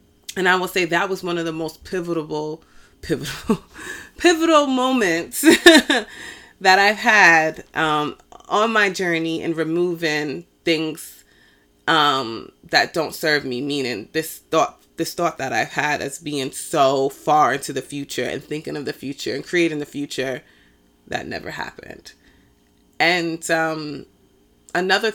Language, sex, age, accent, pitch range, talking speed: English, female, 30-49, American, 150-185 Hz, 140 wpm